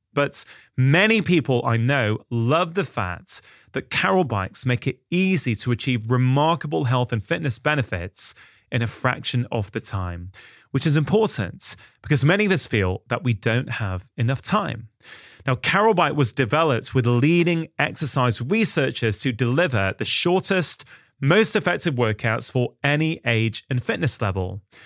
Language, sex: English, male